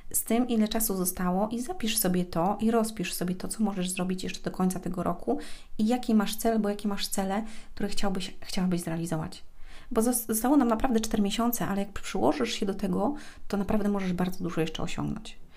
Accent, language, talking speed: native, Polish, 200 wpm